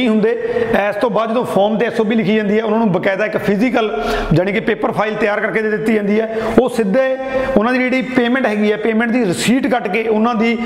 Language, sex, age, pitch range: Hindi, male, 40-59, 180-230 Hz